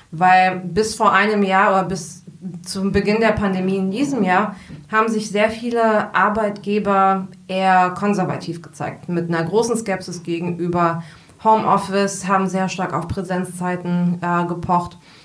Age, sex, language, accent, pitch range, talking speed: 20-39, female, German, German, 170-200 Hz, 140 wpm